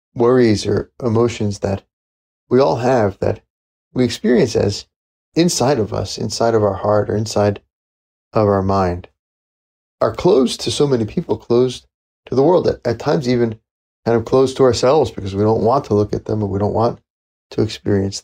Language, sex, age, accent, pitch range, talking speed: English, male, 30-49, American, 85-115 Hz, 185 wpm